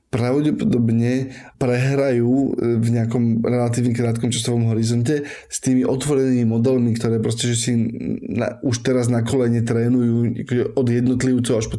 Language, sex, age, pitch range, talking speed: Slovak, male, 20-39, 115-130 Hz, 130 wpm